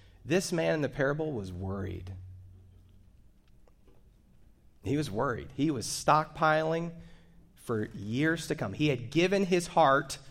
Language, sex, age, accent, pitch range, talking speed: English, male, 30-49, American, 120-170 Hz, 130 wpm